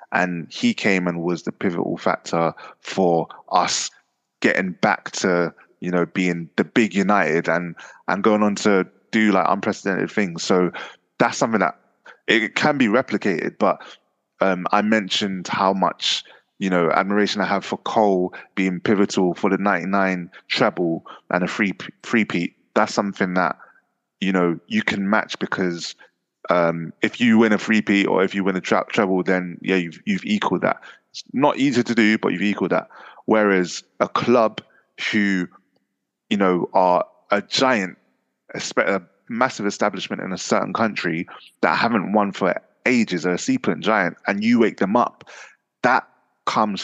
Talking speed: 170 wpm